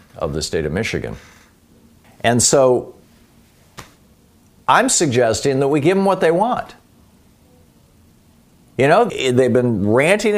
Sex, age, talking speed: male, 50-69, 120 wpm